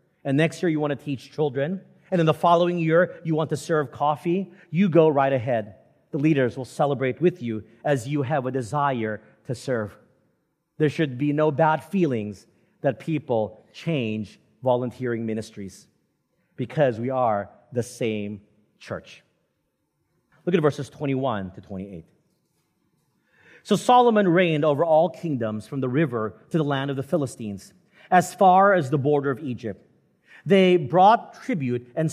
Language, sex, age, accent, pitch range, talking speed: English, male, 40-59, American, 130-175 Hz, 155 wpm